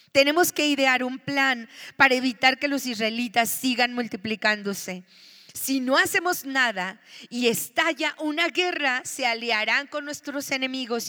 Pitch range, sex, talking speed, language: 230-290 Hz, female, 135 wpm, Spanish